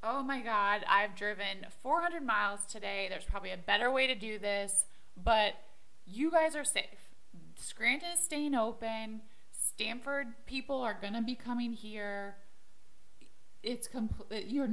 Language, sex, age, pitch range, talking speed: English, female, 20-39, 200-260 Hz, 145 wpm